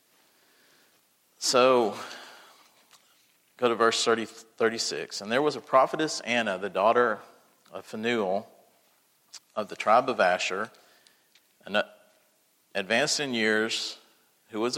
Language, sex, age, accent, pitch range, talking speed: English, male, 40-59, American, 105-115 Hz, 100 wpm